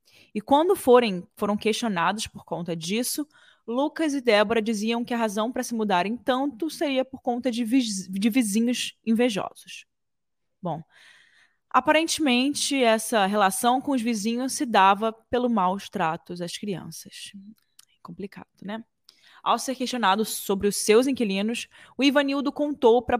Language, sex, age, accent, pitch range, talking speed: Portuguese, female, 20-39, Brazilian, 205-260 Hz, 135 wpm